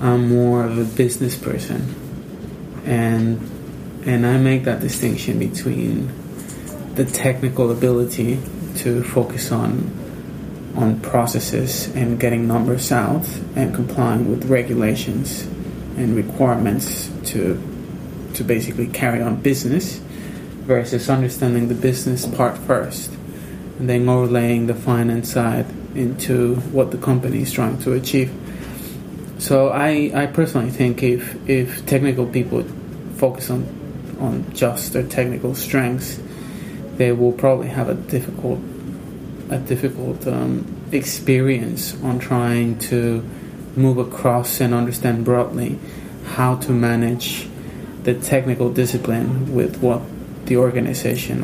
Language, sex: English, male